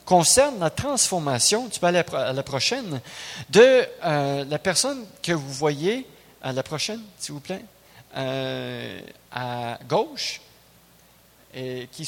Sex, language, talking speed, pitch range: male, French, 135 wpm, 135-180 Hz